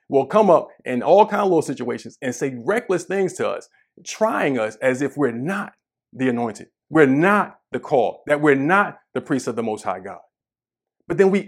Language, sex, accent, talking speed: English, male, American, 210 wpm